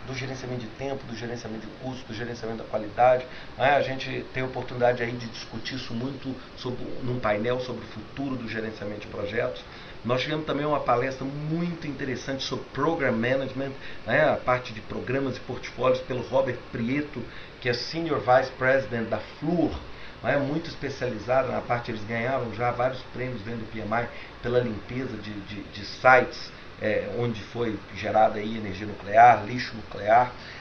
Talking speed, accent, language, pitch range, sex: 165 wpm, Brazilian, English, 125-155 Hz, male